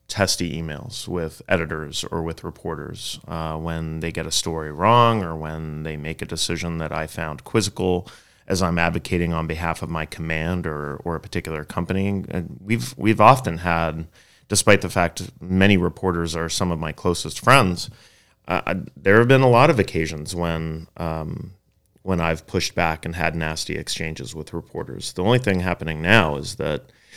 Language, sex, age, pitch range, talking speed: English, male, 30-49, 80-100 Hz, 180 wpm